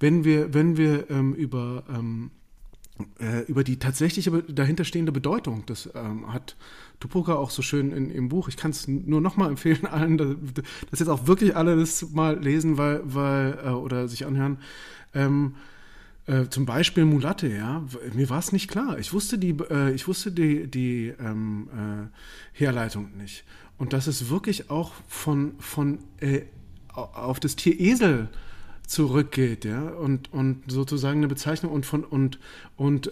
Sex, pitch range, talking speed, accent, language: male, 130-160 Hz, 165 wpm, German, German